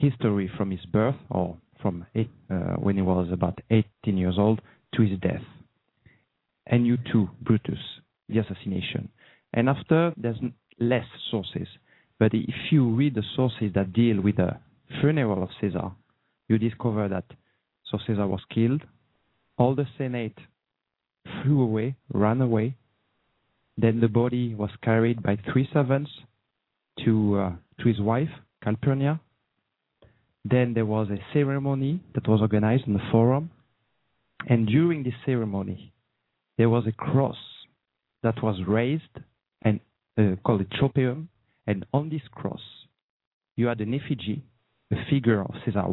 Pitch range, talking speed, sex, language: 105-130 Hz, 140 wpm, male, English